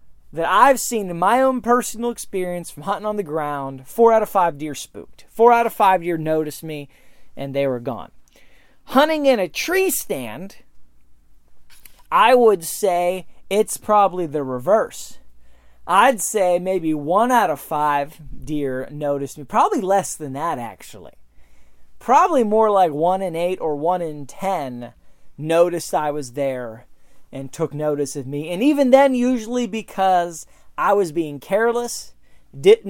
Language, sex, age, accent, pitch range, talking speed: English, male, 30-49, American, 140-220 Hz, 155 wpm